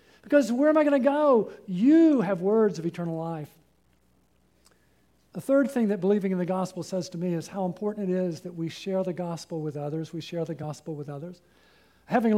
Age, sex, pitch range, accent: 50-69, male, 155-210 Hz, American